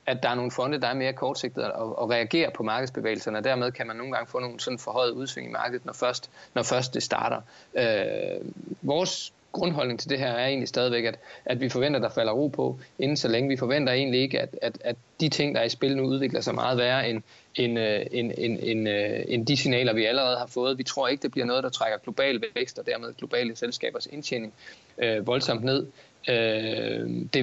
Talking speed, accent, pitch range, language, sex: 225 wpm, native, 120-145 Hz, Danish, male